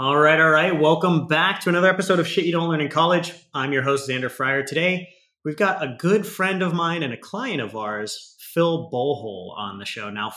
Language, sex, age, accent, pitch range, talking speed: English, male, 30-49, American, 125-165 Hz, 230 wpm